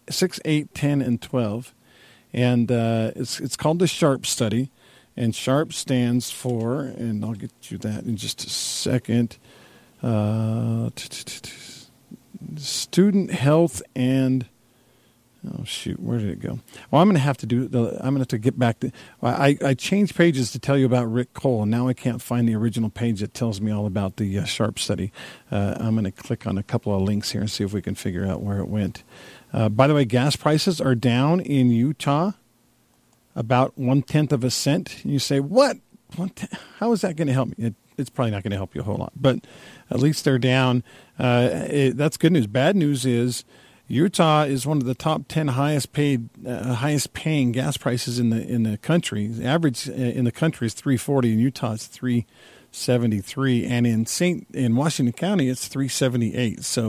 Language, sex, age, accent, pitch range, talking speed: English, male, 50-69, American, 115-140 Hz, 205 wpm